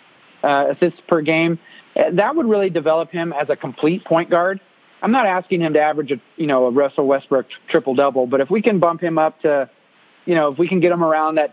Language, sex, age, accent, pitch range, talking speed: English, male, 30-49, American, 150-175 Hz, 240 wpm